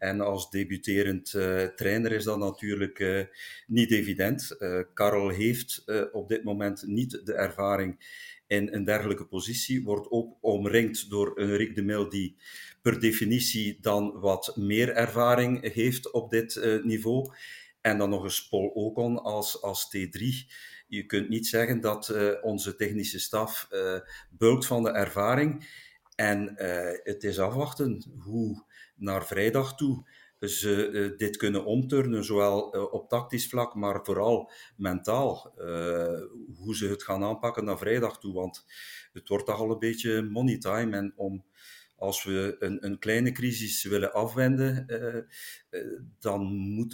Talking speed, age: 155 wpm, 50-69